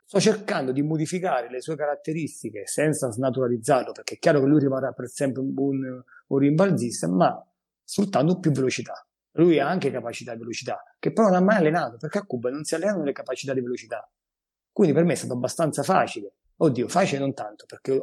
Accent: native